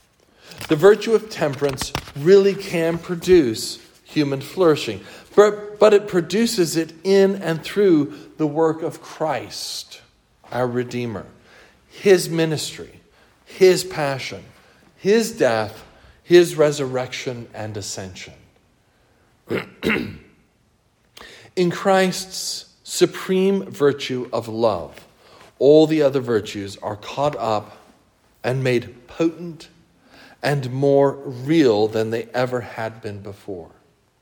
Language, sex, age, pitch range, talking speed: English, male, 50-69, 120-170 Hz, 100 wpm